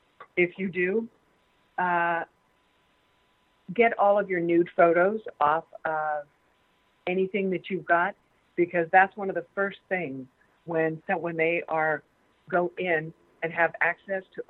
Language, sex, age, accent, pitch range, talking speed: English, female, 50-69, American, 160-195 Hz, 135 wpm